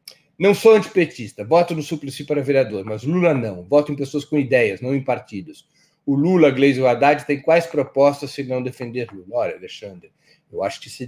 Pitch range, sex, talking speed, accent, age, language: 120-155 Hz, male, 205 wpm, Brazilian, 40-59, Portuguese